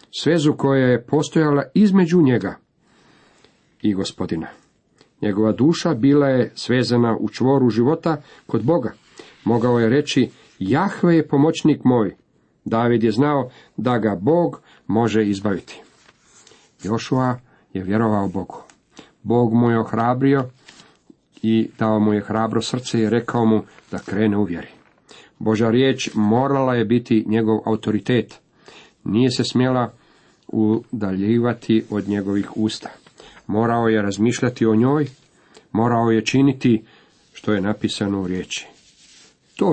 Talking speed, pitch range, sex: 125 wpm, 110-130 Hz, male